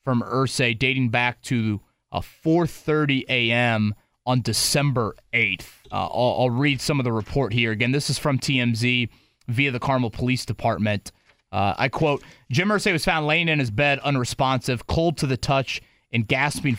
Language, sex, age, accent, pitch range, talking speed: English, male, 30-49, American, 115-140 Hz, 175 wpm